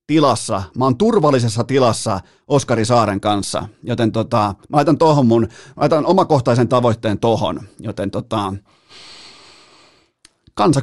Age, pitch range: 30-49, 110-140 Hz